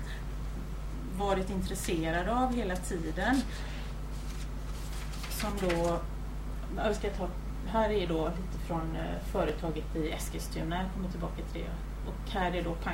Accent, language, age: native, Swedish, 30-49